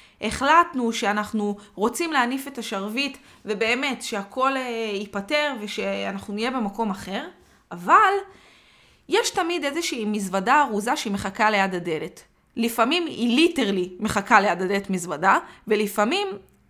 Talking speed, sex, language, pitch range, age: 110 wpm, female, Hebrew, 205-295 Hz, 20-39